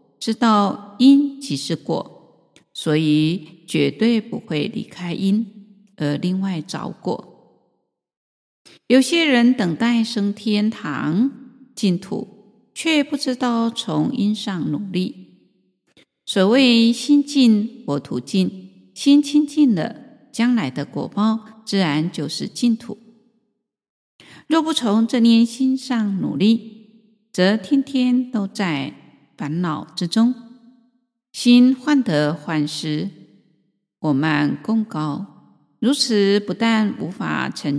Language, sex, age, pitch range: Chinese, female, 50-69, 165-240 Hz